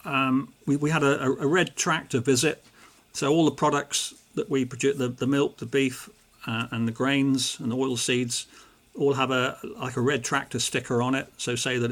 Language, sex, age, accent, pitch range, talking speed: English, male, 50-69, British, 125-140 Hz, 210 wpm